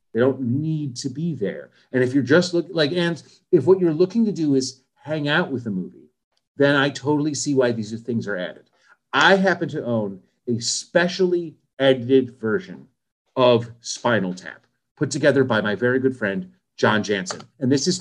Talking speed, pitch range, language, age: 190 wpm, 120-165 Hz, English, 40-59